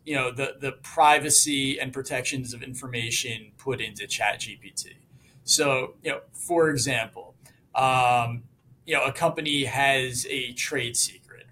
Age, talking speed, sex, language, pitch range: 30-49, 135 wpm, male, English, 130-150 Hz